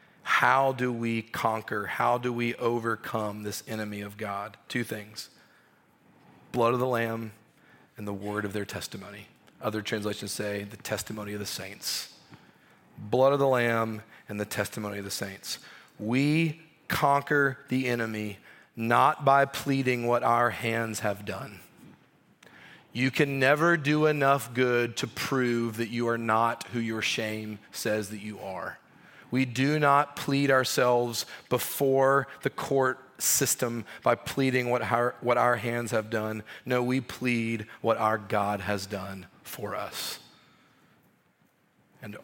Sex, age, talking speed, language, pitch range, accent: male, 30-49, 145 wpm, English, 110-130 Hz, American